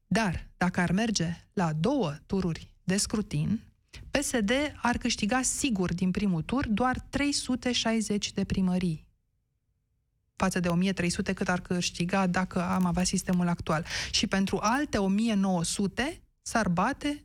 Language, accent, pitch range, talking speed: Romanian, native, 180-215 Hz, 130 wpm